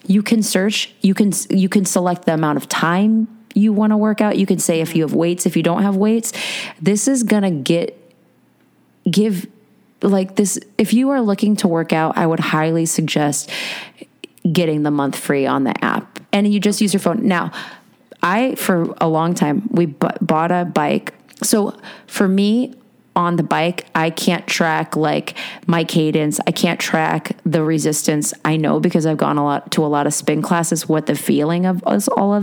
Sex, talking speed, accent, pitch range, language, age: female, 200 wpm, American, 160-205 Hz, English, 30-49